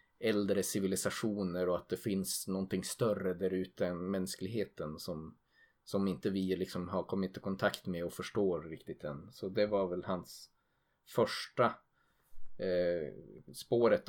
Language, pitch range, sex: Swedish, 90-115 Hz, male